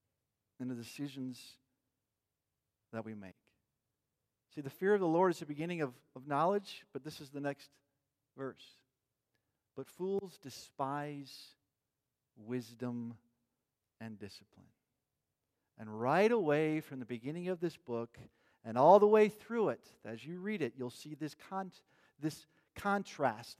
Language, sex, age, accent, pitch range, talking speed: Dutch, male, 50-69, American, 125-195 Hz, 135 wpm